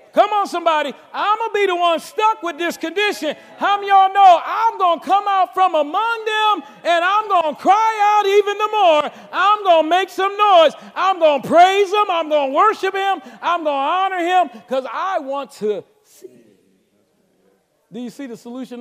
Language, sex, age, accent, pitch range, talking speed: English, male, 40-59, American, 240-345 Hz, 210 wpm